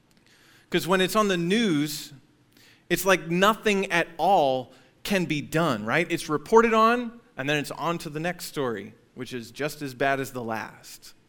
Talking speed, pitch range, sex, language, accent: 180 wpm, 130-165 Hz, male, English, American